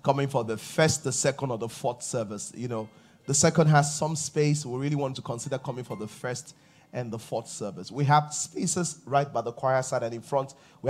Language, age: English, 30-49